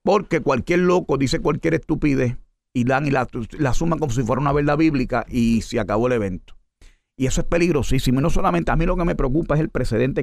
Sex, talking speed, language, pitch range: male, 225 wpm, Spanish, 115-155 Hz